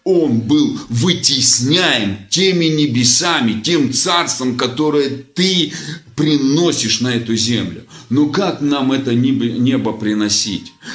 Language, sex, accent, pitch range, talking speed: Russian, male, native, 110-140 Hz, 105 wpm